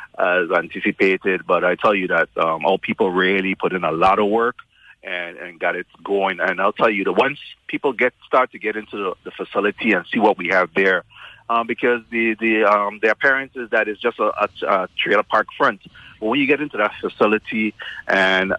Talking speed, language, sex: 215 wpm, English, male